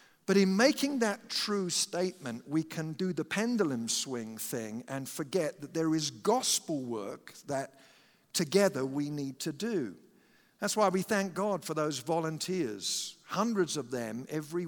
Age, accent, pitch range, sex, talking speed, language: 50-69, British, 140-195 Hz, male, 155 wpm, English